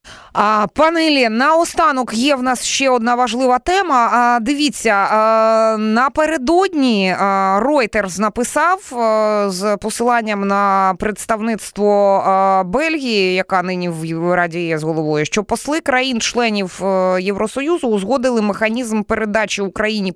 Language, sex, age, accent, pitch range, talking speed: Ukrainian, female, 20-39, native, 185-250 Hz, 120 wpm